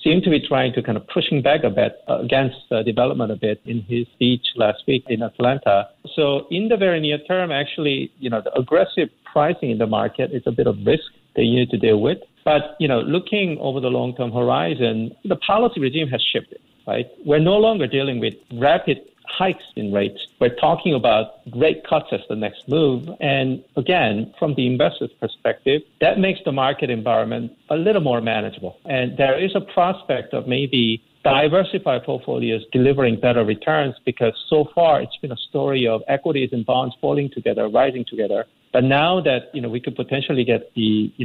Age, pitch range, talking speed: 50-69, 120-155 Hz, 195 wpm